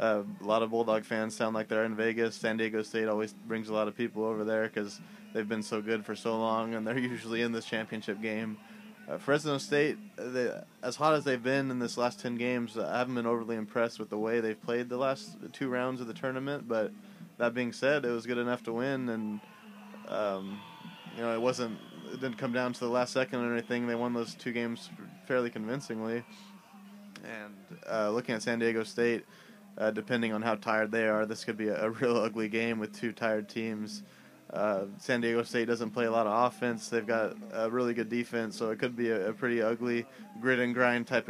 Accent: American